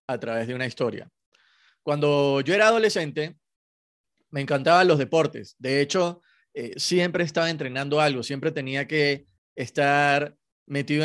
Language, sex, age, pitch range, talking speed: Spanish, male, 30-49, 130-155 Hz, 135 wpm